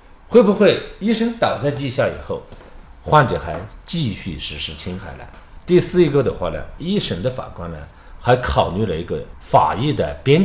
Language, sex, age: Chinese, male, 50-69